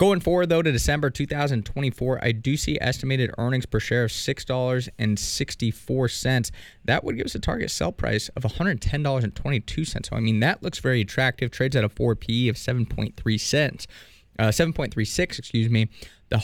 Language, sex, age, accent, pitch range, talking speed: English, male, 20-39, American, 110-130 Hz, 165 wpm